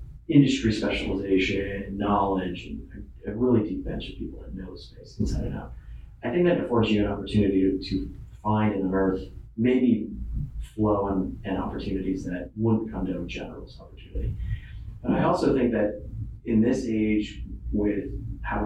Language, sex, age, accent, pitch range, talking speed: English, male, 30-49, American, 95-110 Hz, 160 wpm